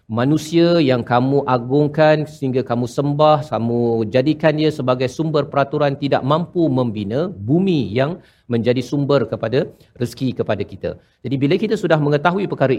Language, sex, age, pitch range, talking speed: Malayalam, male, 50-69, 115-155 Hz, 140 wpm